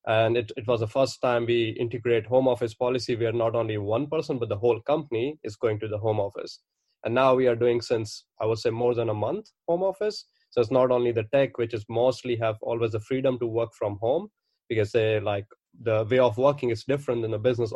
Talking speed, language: 235 wpm, English